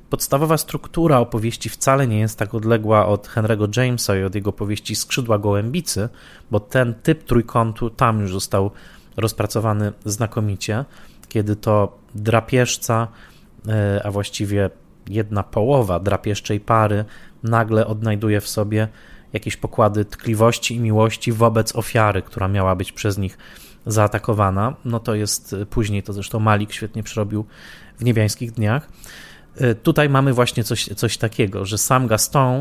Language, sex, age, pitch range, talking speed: Polish, male, 20-39, 105-120 Hz, 135 wpm